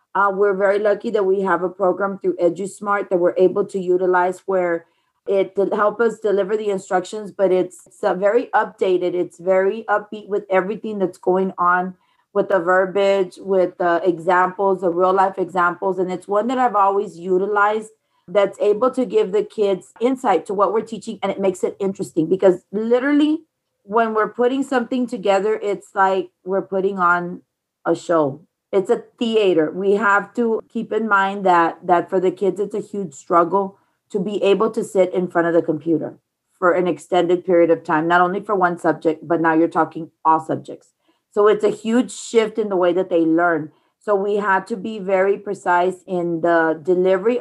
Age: 30-49